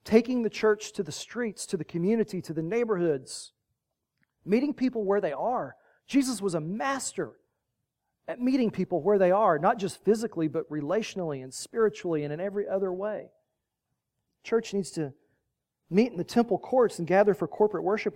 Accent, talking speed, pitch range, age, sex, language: American, 170 wpm, 165-220 Hz, 40-59, male, English